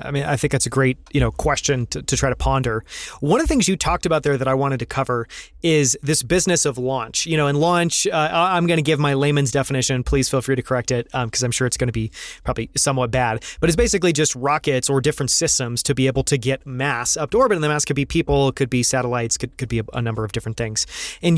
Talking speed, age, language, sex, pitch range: 275 wpm, 30-49, English, male, 130-160 Hz